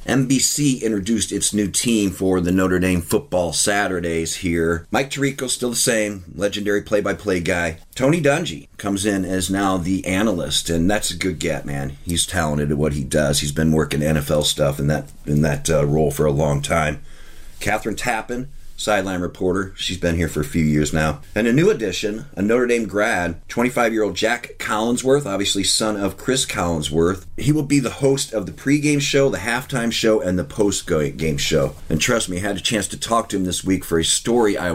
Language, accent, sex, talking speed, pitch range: English, American, male, 195 wpm, 80-110 Hz